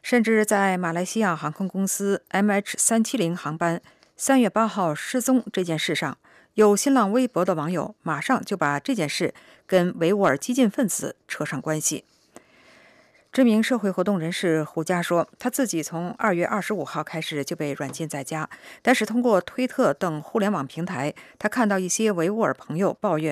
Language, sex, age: English, female, 50-69